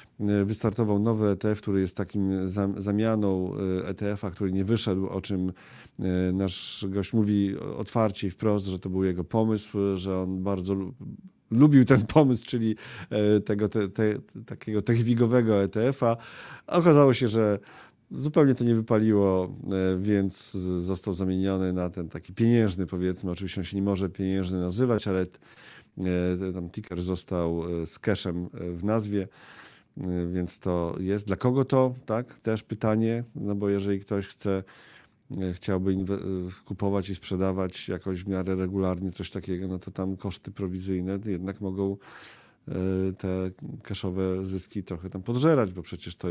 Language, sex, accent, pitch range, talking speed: Polish, male, native, 95-110 Hz, 140 wpm